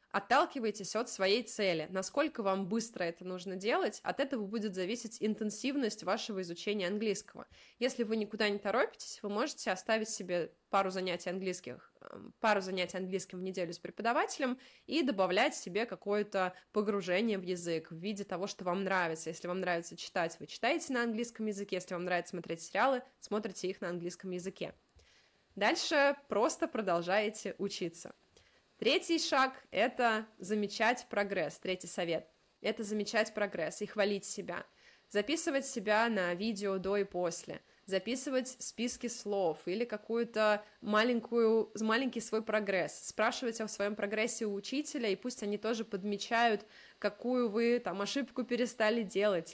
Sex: female